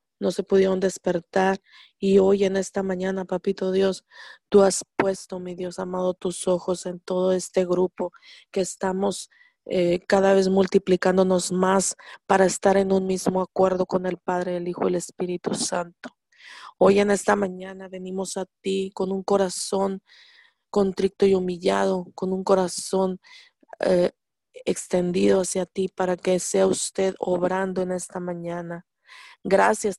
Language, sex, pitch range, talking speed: Spanish, female, 185-205 Hz, 150 wpm